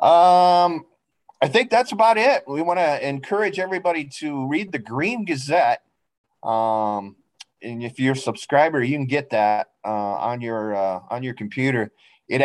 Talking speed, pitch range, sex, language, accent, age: 165 wpm, 110-140 Hz, male, English, American, 30-49